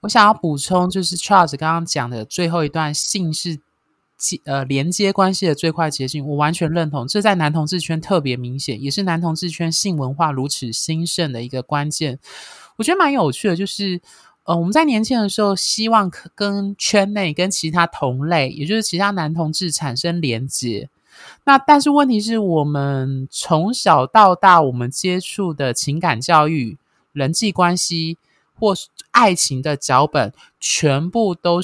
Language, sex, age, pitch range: Chinese, male, 20-39, 145-200 Hz